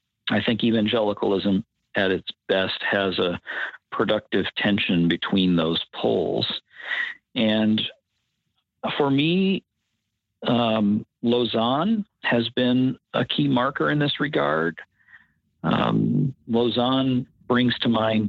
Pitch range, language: 105-125 Hz, English